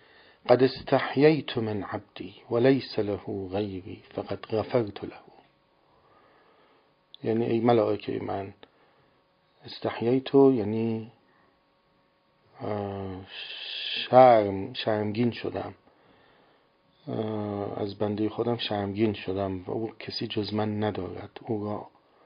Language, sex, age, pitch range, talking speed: Persian, male, 50-69, 105-125 Hz, 90 wpm